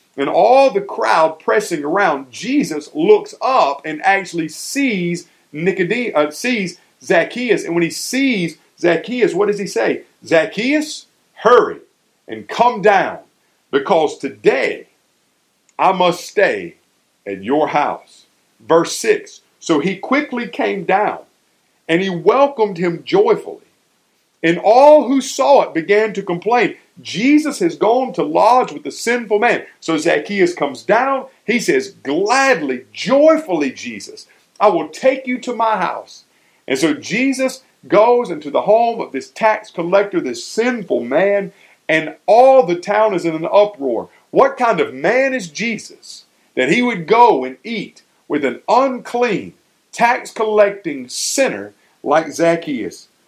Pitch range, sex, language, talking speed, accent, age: 170-265 Hz, male, English, 140 wpm, American, 50-69